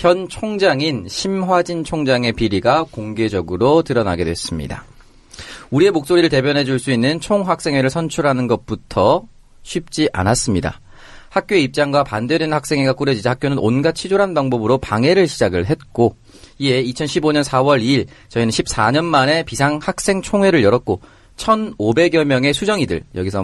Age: 30-49